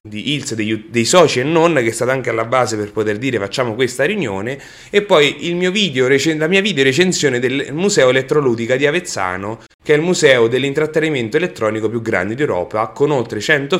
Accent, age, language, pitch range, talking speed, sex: Italian, 30-49, English, 115-160 Hz, 195 wpm, male